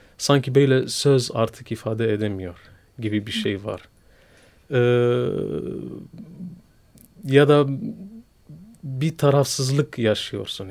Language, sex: Turkish, male